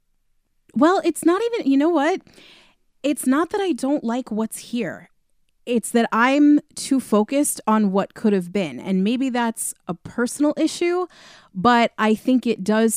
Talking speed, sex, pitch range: 165 wpm, female, 180-225 Hz